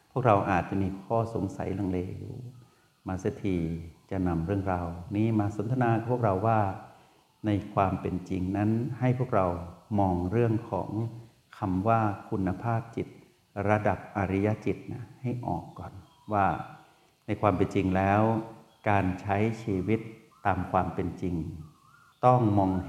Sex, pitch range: male, 95-115 Hz